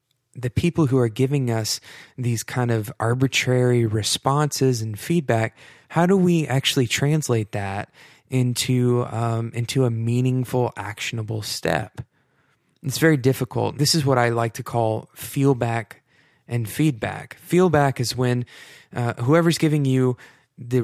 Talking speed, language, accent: 135 wpm, English, American